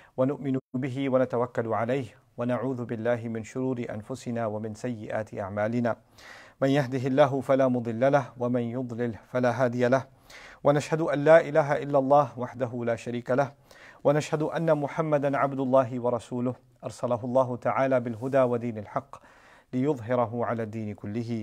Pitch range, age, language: 115-130 Hz, 40-59, English